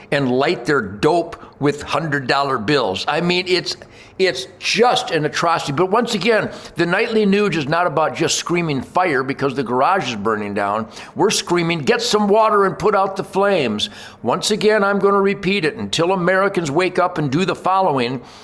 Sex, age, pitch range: male, 60-79, 140-190 Hz